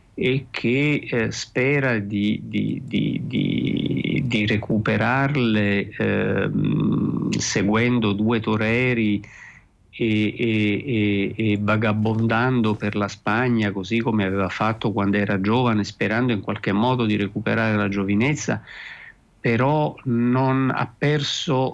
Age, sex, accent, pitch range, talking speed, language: 50-69, male, native, 110-130 Hz, 110 wpm, Italian